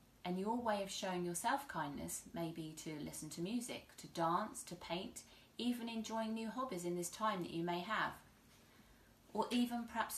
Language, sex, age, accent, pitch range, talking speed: English, female, 30-49, British, 175-220 Hz, 185 wpm